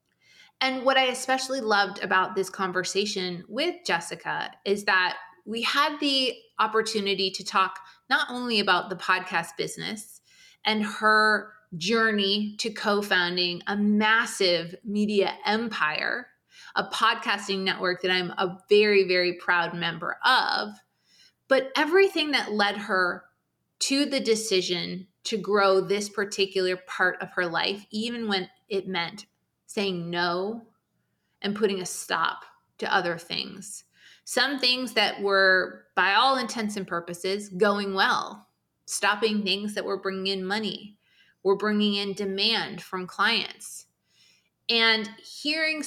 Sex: female